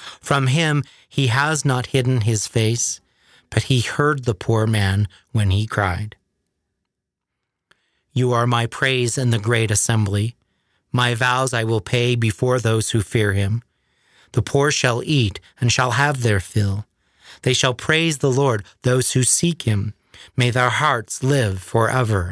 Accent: American